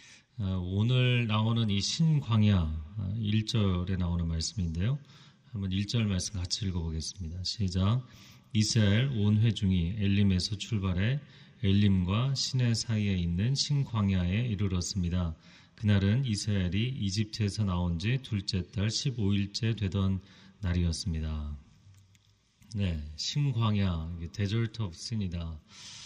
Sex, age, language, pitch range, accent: male, 30-49, Korean, 95-115 Hz, native